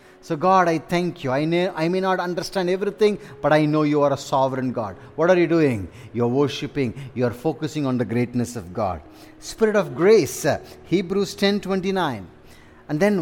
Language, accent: English, Indian